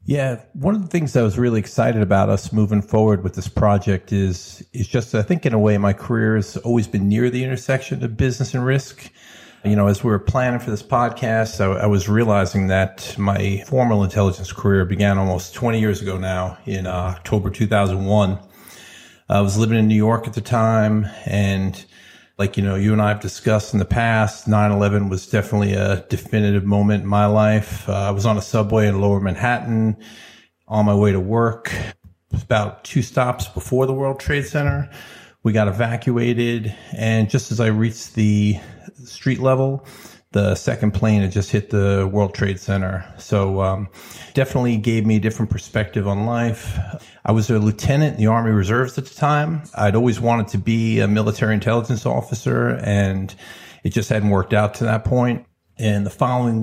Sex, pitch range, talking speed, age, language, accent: male, 100-115 Hz, 190 wpm, 40-59, English, American